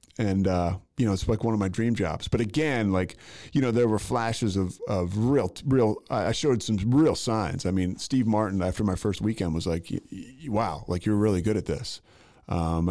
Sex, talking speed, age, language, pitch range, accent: male, 215 wpm, 30-49, English, 90-110 Hz, American